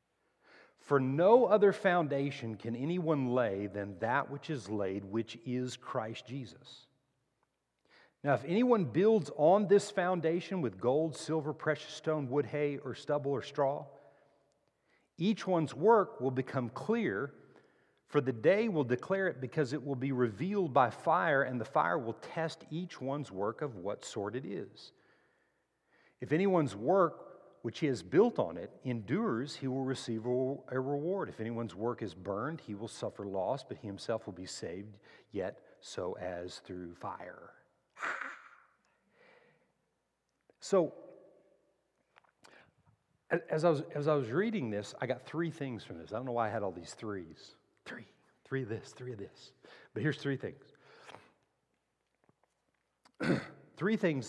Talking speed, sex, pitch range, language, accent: 150 wpm, male, 120-165 Hz, English, American